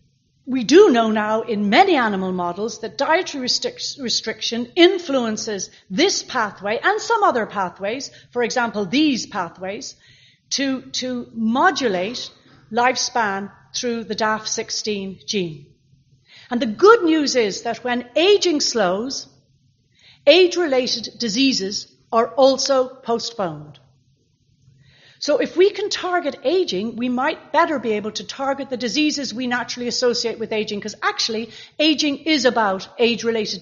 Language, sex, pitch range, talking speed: English, female, 205-270 Hz, 125 wpm